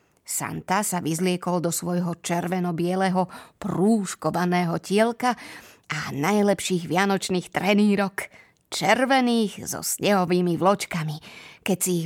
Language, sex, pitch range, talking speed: Slovak, female, 180-235 Hz, 95 wpm